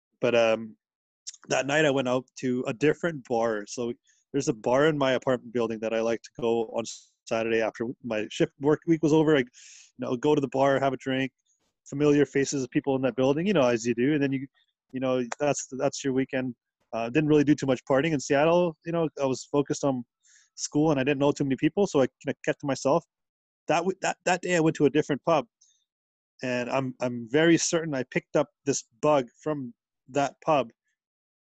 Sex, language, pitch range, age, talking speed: male, English, 120-145 Hz, 20-39, 225 wpm